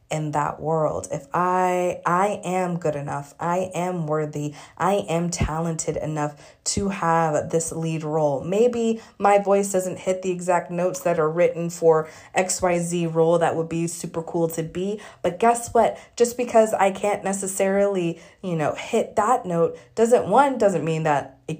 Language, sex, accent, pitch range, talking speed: English, female, American, 155-185 Hz, 170 wpm